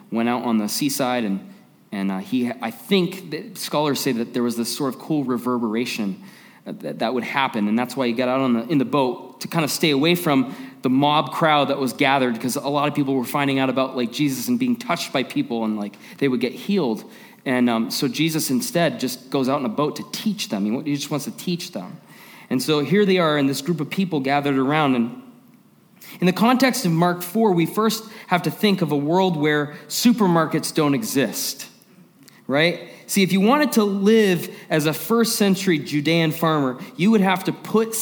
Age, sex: 20-39, male